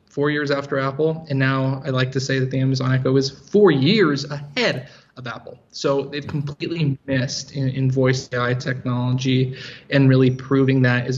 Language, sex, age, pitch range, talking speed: English, male, 20-39, 130-140 Hz, 185 wpm